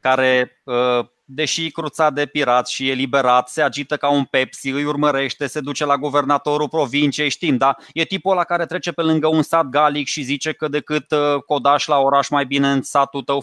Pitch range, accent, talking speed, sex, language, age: 145-195 Hz, native, 190 wpm, male, Romanian, 20-39